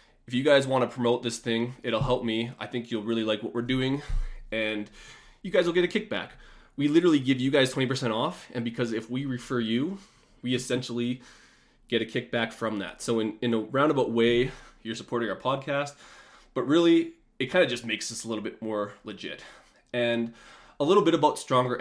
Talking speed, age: 205 wpm, 20-39